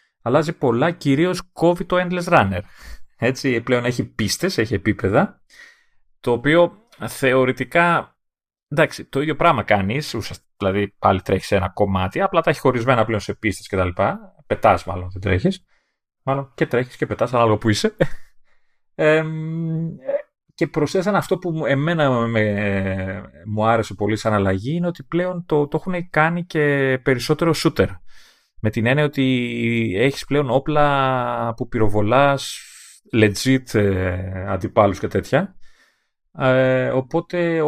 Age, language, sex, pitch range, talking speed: 30-49, Greek, male, 105-155 Hz, 130 wpm